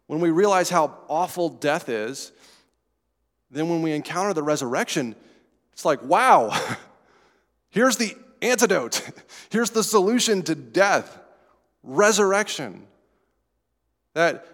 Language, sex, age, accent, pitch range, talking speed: English, male, 30-49, American, 120-175 Hz, 105 wpm